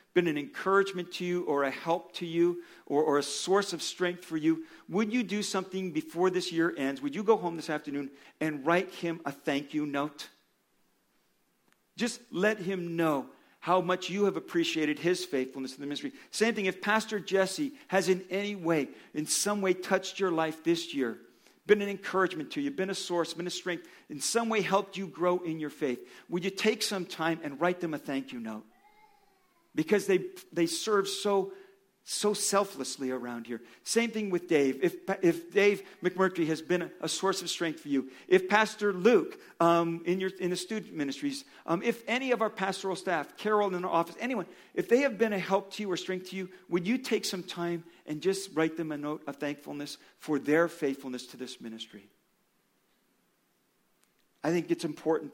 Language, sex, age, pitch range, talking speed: English, male, 50-69, 160-205 Hz, 200 wpm